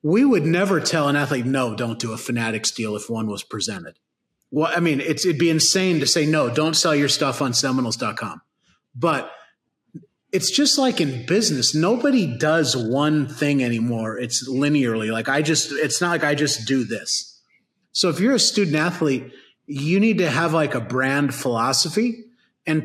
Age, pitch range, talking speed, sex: 30-49, 135-180 Hz, 185 wpm, male